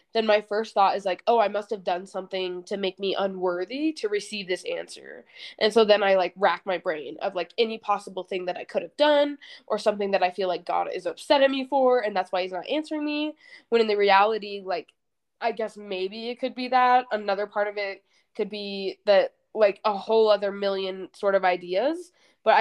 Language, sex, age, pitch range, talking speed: English, female, 20-39, 190-240 Hz, 225 wpm